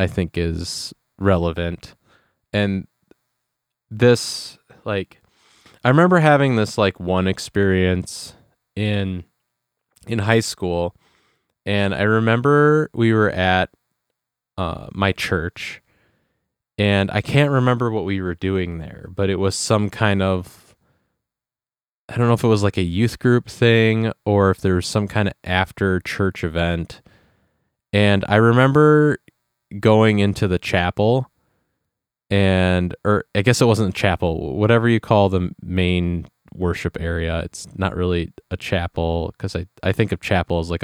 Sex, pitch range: male, 90-110 Hz